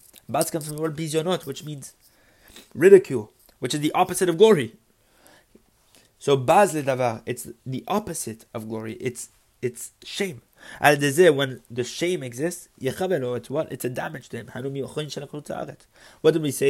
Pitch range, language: 120-160 Hz, English